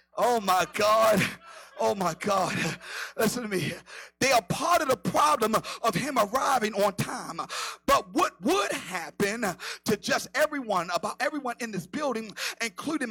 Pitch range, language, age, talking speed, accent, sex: 210-295 Hz, English, 40-59, 145 wpm, American, male